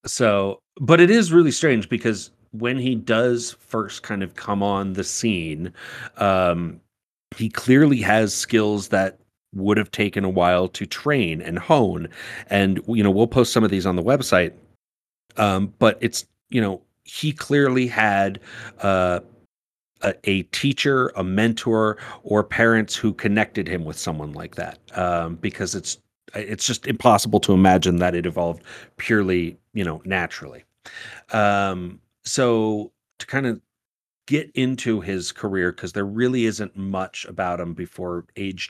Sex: male